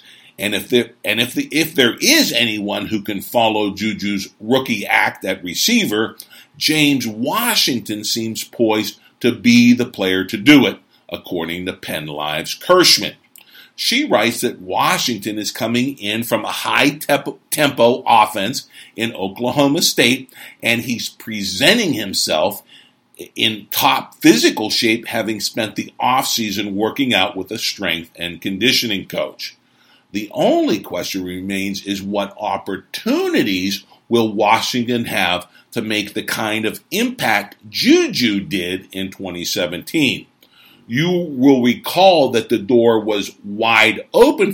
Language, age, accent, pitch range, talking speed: English, 50-69, American, 100-120 Hz, 135 wpm